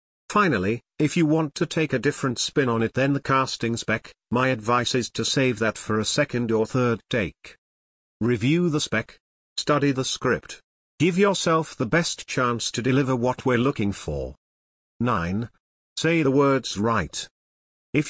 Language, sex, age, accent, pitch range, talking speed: English, male, 50-69, British, 110-145 Hz, 165 wpm